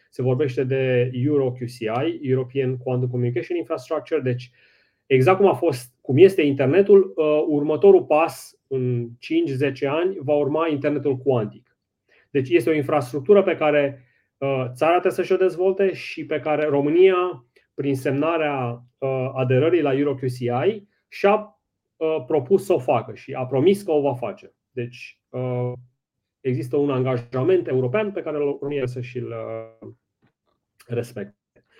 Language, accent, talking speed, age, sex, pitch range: Romanian, native, 130 wpm, 30-49, male, 130-165 Hz